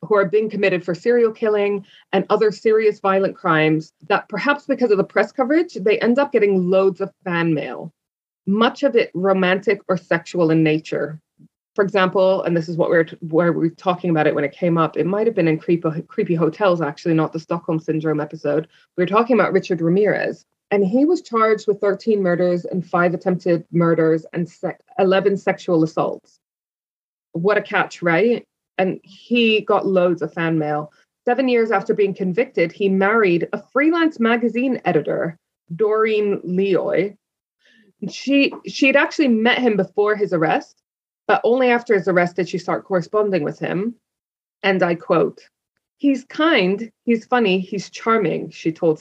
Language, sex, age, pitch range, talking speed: English, female, 20-39, 170-220 Hz, 175 wpm